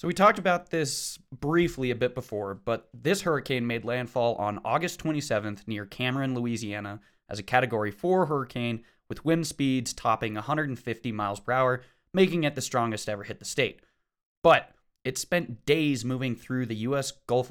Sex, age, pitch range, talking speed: male, 20-39, 110-145 Hz, 170 wpm